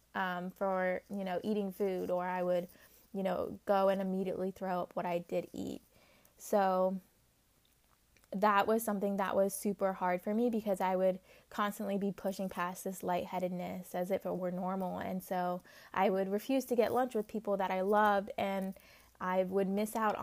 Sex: female